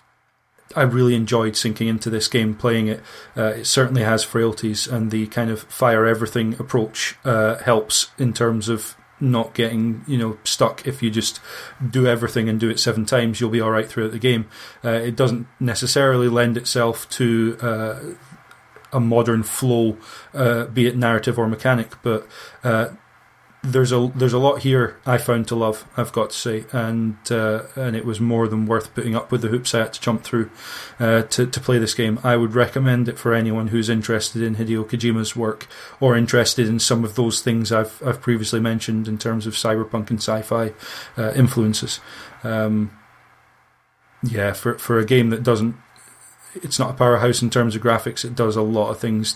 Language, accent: English, British